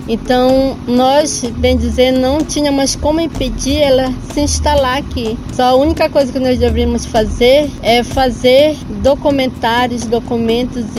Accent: Brazilian